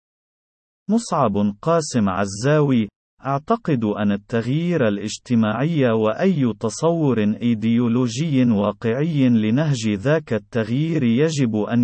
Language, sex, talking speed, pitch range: Arabic, male, 80 wpm, 110-155 Hz